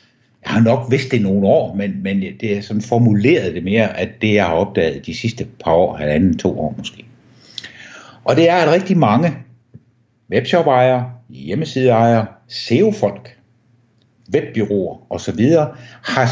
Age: 60-79